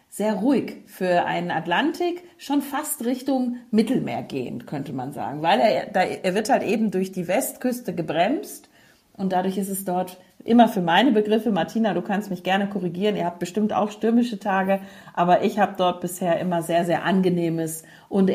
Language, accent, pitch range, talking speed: German, German, 175-220 Hz, 175 wpm